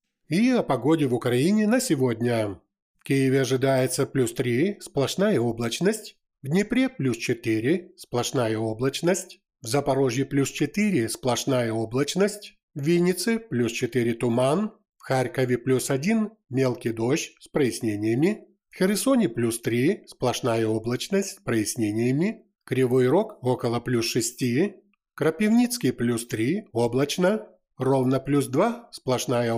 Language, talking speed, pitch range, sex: Ukrainian, 125 wpm, 120-180 Hz, male